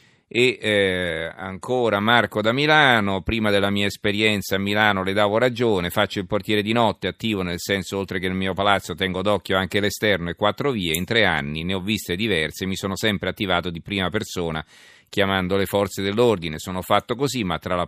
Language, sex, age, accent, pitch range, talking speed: Italian, male, 40-59, native, 95-110 Hz, 200 wpm